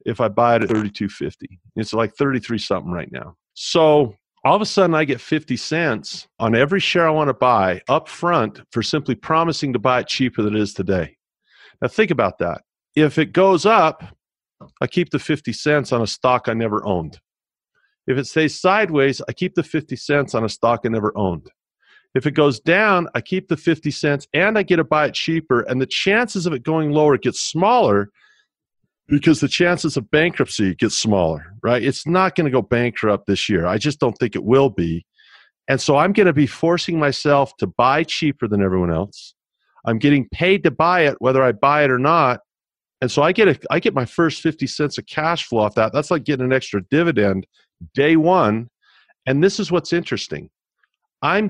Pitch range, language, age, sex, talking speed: 115-160 Hz, English, 50-69, male, 210 wpm